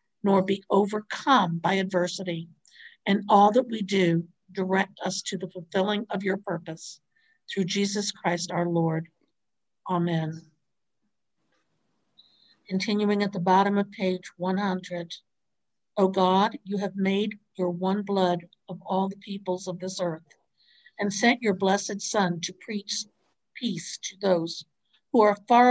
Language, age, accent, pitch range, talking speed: English, 60-79, American, 180-210 Hz, 140 wpm